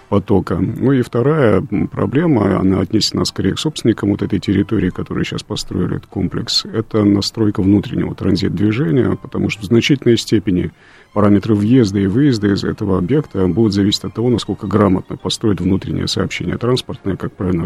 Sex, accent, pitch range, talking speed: male, native, 95-110 Hz, 155 wpm